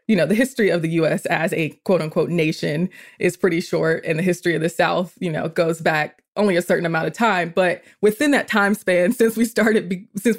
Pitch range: 165-205 Hz